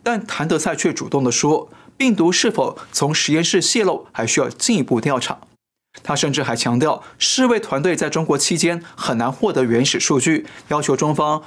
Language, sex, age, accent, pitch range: Chinese, male, 20-39, native, 130-175 Hz